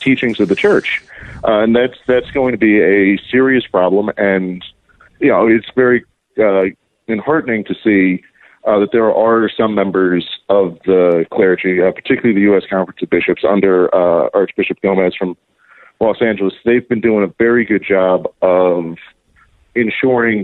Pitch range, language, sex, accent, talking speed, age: 95-115 Hz, English, male, American, 160 wpm, 40-59